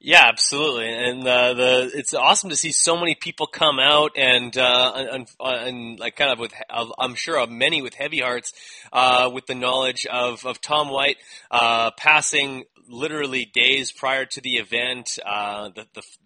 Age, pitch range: 20-39, 110-130 Hz